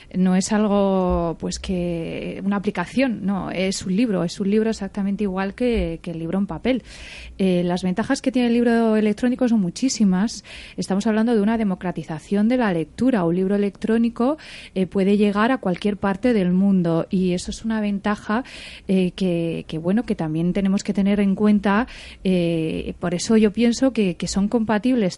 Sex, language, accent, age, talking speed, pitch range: female, Spanish, Spanish, 20-39, 180 wpm, 180-225 Hz